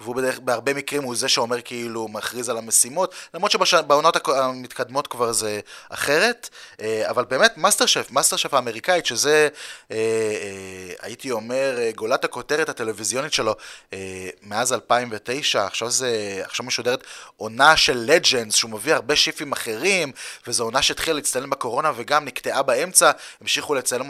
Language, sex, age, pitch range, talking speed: Hebrew, male, 20-39, 115-165 Hz, 140 wpm